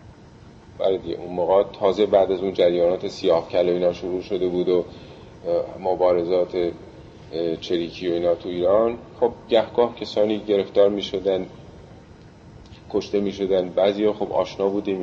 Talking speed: 140 wpm